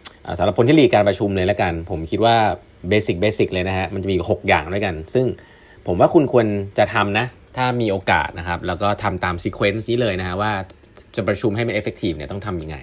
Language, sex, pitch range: Thai, male, 90-115 Hz